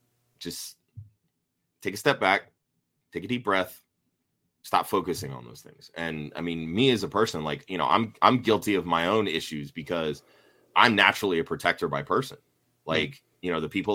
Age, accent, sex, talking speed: 30-49, American, male, 185 wpm